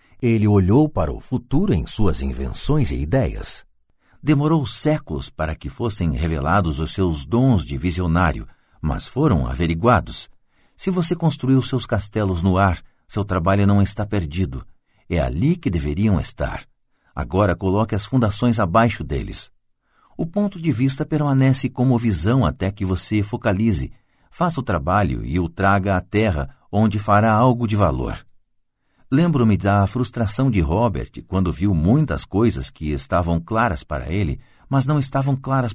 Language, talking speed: Portuguese, 150 wpm